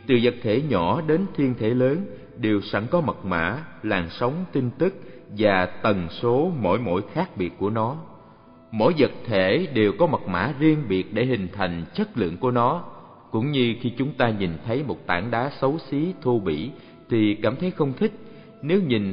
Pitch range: 100-135 Hz